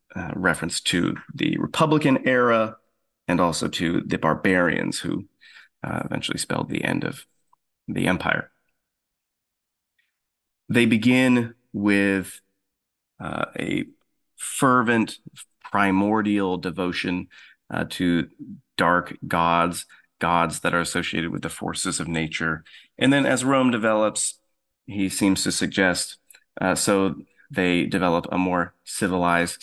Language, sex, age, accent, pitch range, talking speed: English, male, 30-49, American, 85-115 Hz, 115 wpm